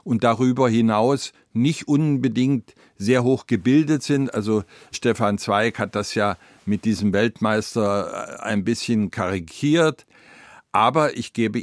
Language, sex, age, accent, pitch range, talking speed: German, male, 50-69, German, 110-140 Hz, 125 wpm